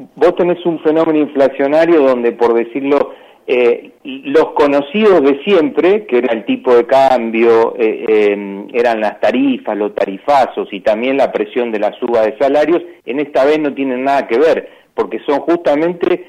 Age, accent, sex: 40-59, Argentinian, male